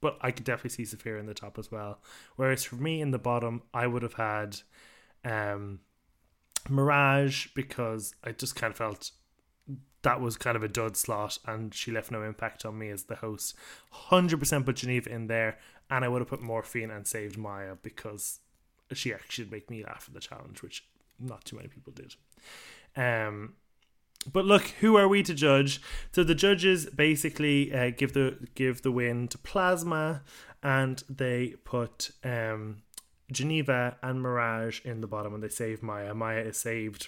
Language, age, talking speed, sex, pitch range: English, 20-39, 185 wpm, male, 110-140 Hz